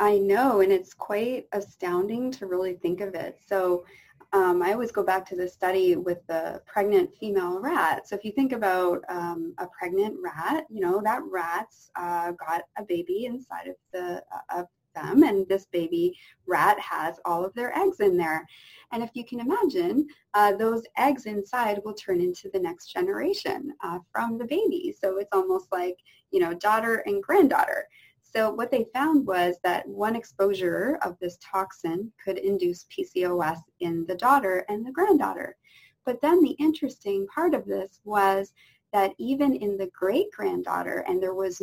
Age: 20-39